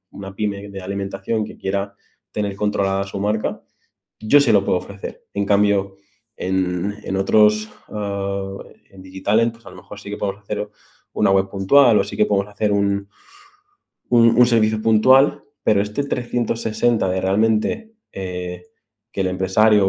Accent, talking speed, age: Spanish, 165 wpm, 20-39